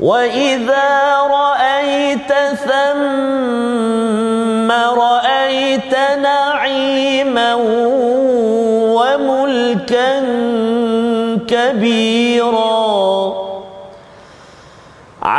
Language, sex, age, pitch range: Malayalam, male, 40-59, 230-275 Hz